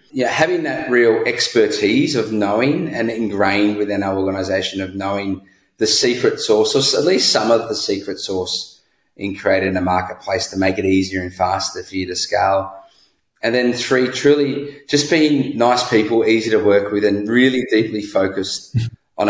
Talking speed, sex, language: 175 wpm, male, English